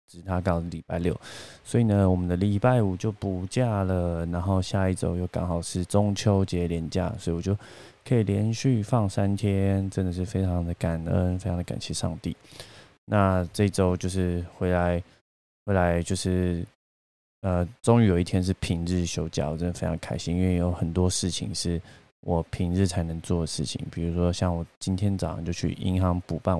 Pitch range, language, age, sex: 85-95 Hz, Chinese, 20-39, male